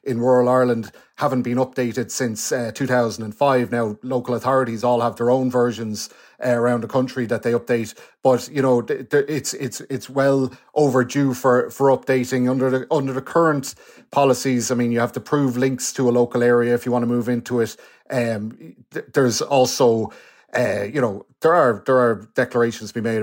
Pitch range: 120-130 Hz